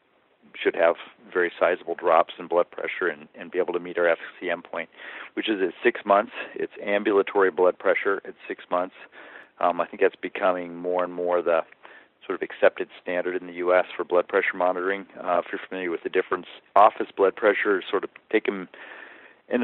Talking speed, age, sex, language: 195 wpm, 40-59, male, English